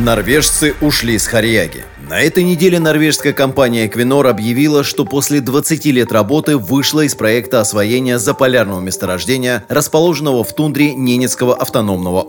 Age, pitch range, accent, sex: 30-49, 105-130 Hz, native, male